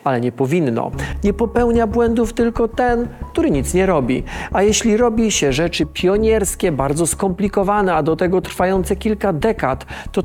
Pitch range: 160-225 Hz